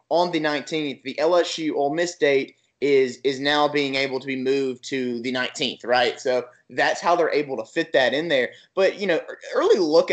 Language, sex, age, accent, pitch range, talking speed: English, male, 20-39, American, 130-155 Hz, 210 wpm